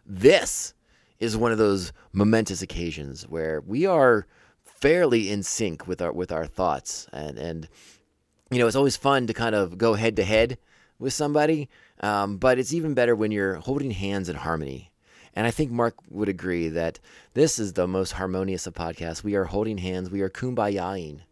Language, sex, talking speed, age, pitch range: English, male, 185 wpm, 30-49, 85-115 Hz